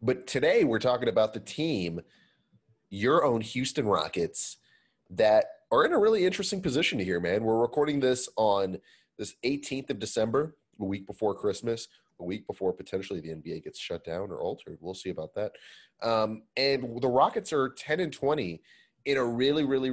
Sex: male